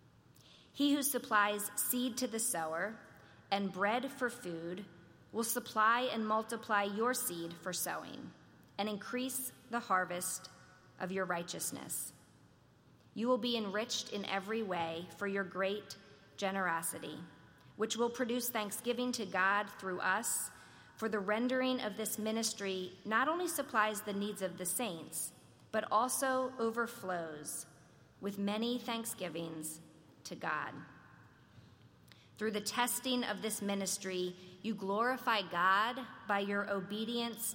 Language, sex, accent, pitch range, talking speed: English, female, American, 185-225 Hz, 125 wpm